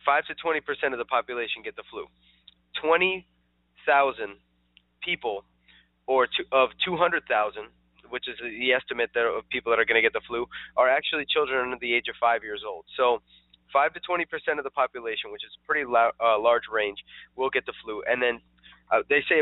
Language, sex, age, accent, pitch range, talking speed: English, male, 20-39, American, 110-165 Hz, 180 wpm